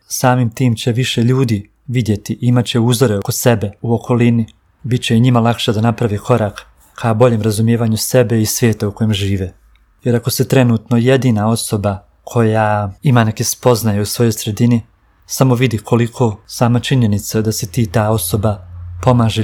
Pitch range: 105-125 Hz